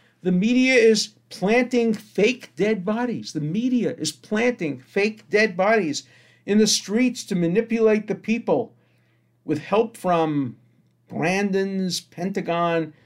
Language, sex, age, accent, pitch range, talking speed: English, male, 50-69, American, 150-205 Hz, 120 wpm